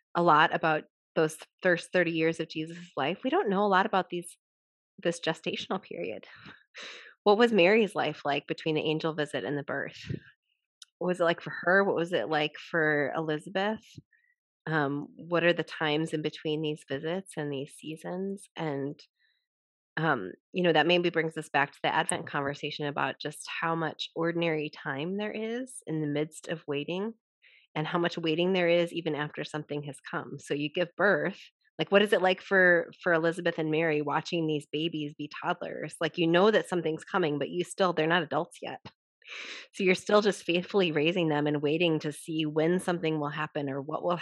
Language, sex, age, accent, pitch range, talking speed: English, female, 20-39, American, 150-180 Hz, 195 wpm